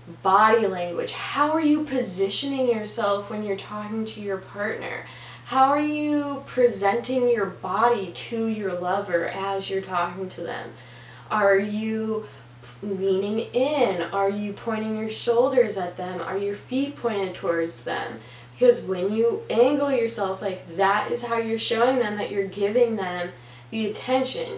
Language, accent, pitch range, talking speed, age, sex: English, American, 195-240 Hz, 150 wpm, 10-29, female